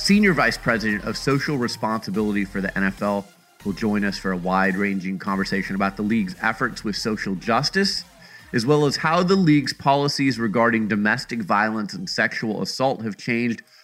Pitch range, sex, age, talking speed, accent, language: 110-140 Hz, male, 30-49, 165 wpm, American, English